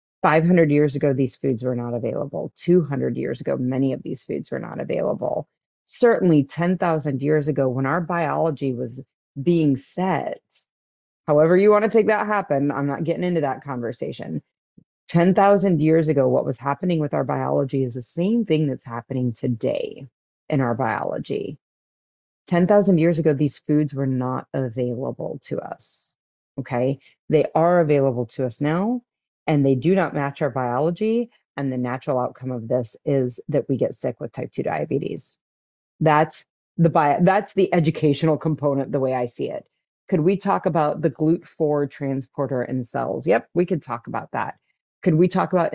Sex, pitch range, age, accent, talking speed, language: female, 130-170 Hz, 30-49, American, 170 wpm, English